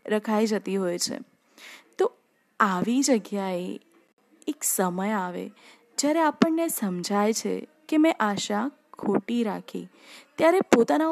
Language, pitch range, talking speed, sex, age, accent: Gujarati, 215-290 Hz, 115 wpm, female, 20-39, native